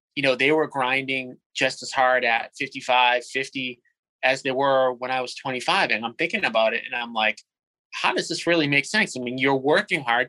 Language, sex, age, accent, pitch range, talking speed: English, male, 20-39, American, 120-145 Hz, 215 wpm